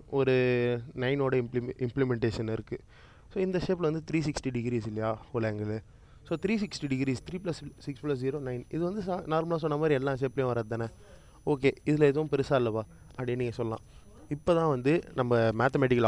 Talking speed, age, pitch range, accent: 175 wpm, 20-39, 125-150 Hz, native